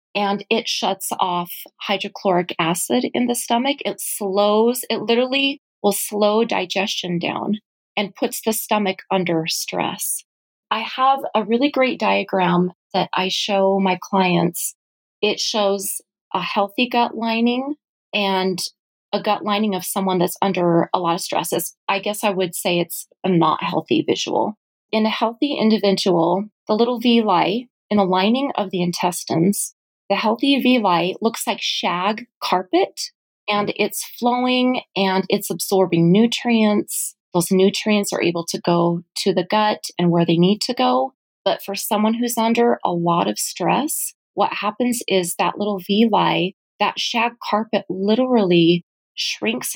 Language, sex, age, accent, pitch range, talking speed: English, female, 30-49, American, 185-225 Hz, 150 wpm